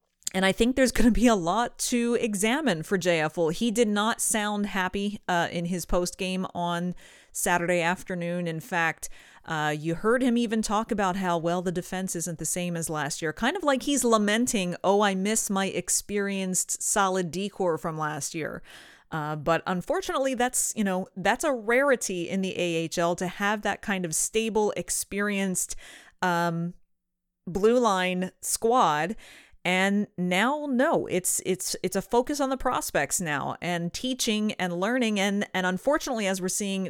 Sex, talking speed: female, 175 wpm